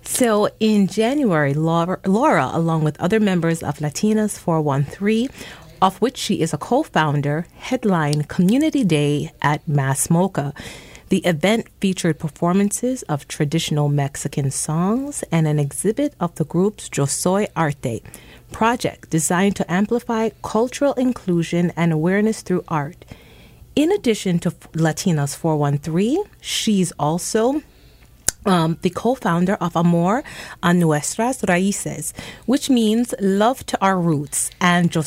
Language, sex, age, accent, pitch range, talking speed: English, female, 30-49, American, 155-210 Hz, 125 wpm